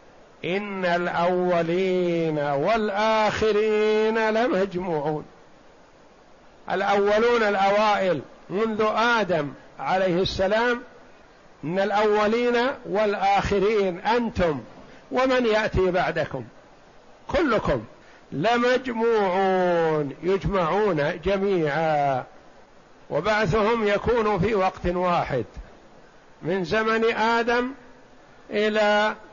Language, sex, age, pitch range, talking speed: Arabic, male, 50-69, 180-215 Hz, 60 wpm